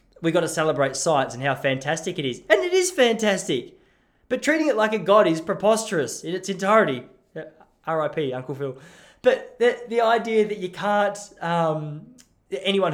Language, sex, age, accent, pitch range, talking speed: English, male, 20-39, Australian, 145-215 Hz, 170 wpm